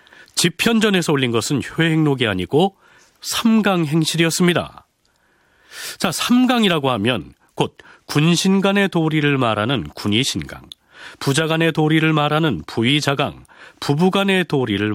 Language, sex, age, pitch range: Korean, male, 40-59, 130-175 Hz